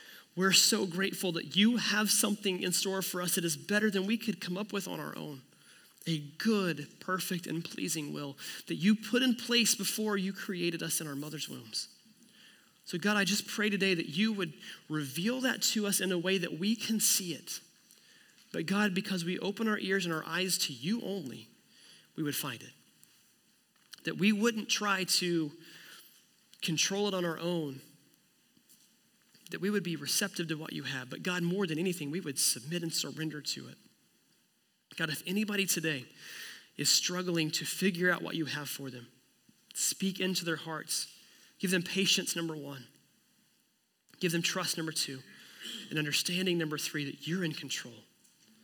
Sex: male